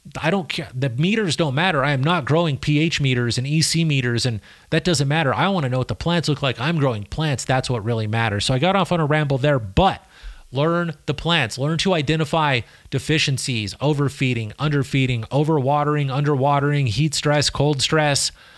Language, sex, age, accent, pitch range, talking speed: English, male, 30-49, American, 130-160 Hz, 195 wpm